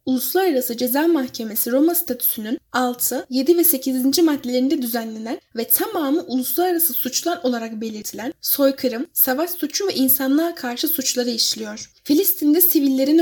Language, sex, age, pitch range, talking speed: Turkish, female, 10-29, 245-315 Hz, 125 wpm